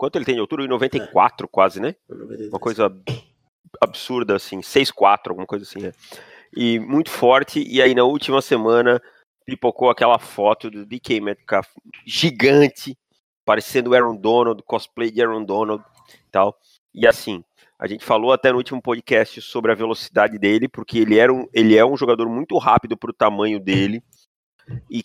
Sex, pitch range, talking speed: male, 105-130 Hz, 170 wpm